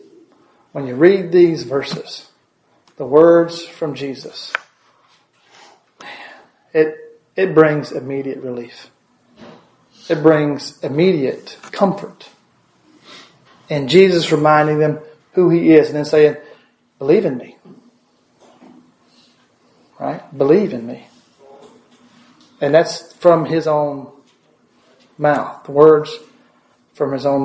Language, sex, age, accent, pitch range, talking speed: English, male, 40-59, American, 145-180 Hz, 100 wpm